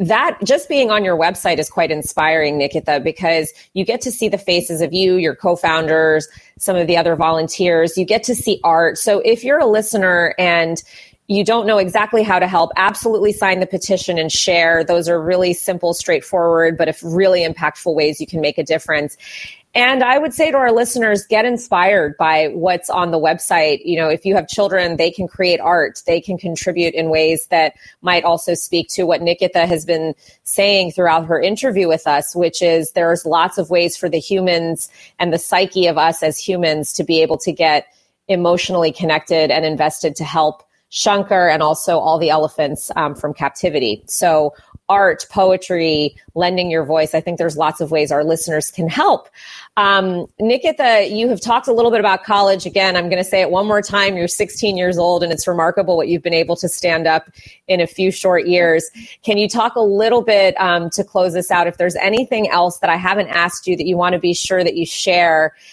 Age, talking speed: 30-49, 210 wpm